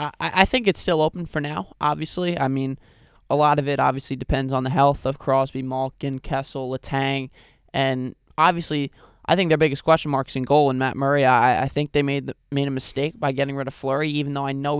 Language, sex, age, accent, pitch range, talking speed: English, male, 10-29, American, 135-150 Hz, 225 wpm